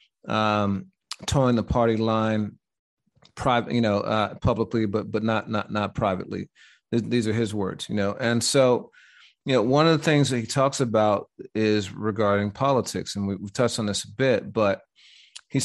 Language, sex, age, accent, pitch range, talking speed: English, male, 30-49, American, 105-120 Hz, 185 wpm